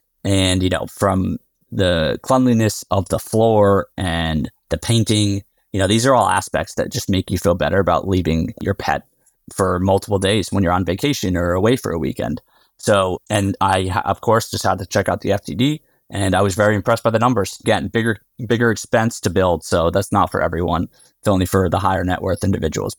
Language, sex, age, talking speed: English, male, 30-49, 205 wpm